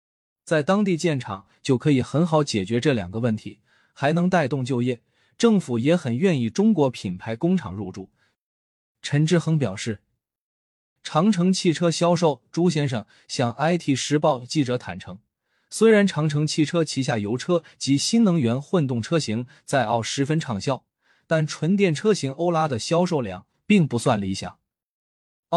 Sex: male